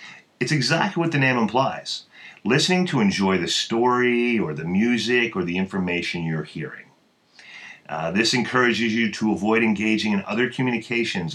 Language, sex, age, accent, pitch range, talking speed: English, male, 40-59, American, 90-125 Hz, 155 wpm